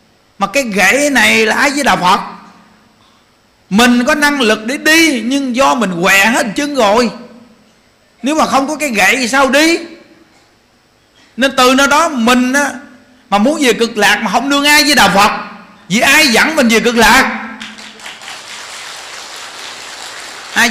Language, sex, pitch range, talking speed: Vietnamese, male, 215-280 Hz, 165 wpm